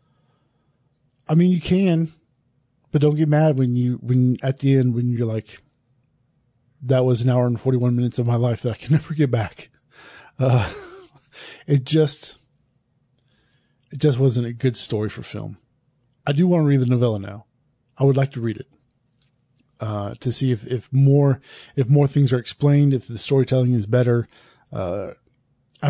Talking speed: 175 wpm